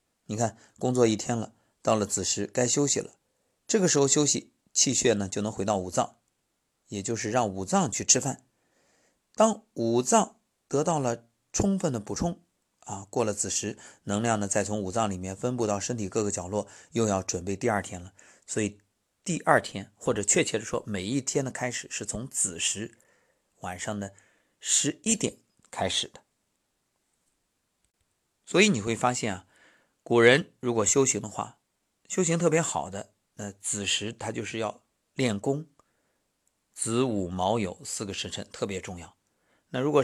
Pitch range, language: 100-135 Hz, Chinese